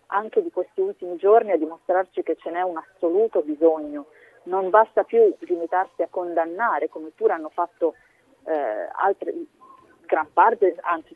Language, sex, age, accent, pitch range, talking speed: Italian, female, 30-49, native, 165-210 Hz, 145 wpm